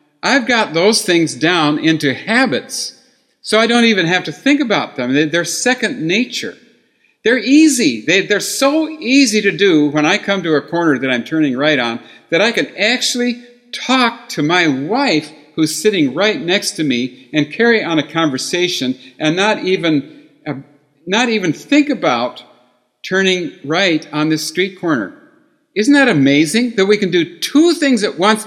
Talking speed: 170 wpm